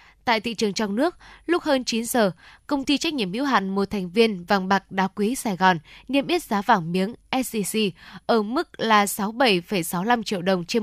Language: Vietnamese